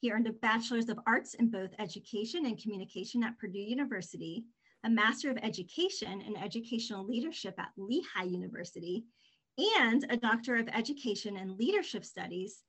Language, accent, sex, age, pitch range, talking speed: English, American, female, 30-49, 210-265 Hz, 150 wpm